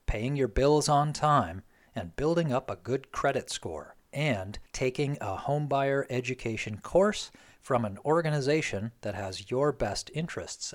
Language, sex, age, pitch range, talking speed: English, male, 40-59, 110-150 Hz, 150 wpm